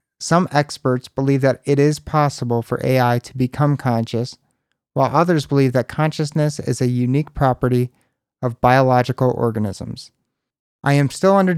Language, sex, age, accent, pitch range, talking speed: English, male, 30-49, American, 120-145 Hz, 145 wpm